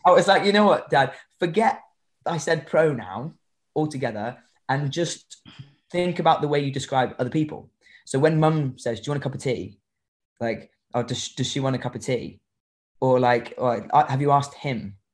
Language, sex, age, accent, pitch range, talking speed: English, male, 20-39, British, 120-150 Hz, 200 wpm